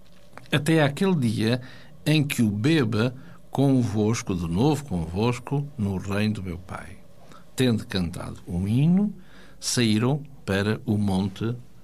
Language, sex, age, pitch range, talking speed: Portuguese, male, 60-79, 95-140 Hz, 120 wpm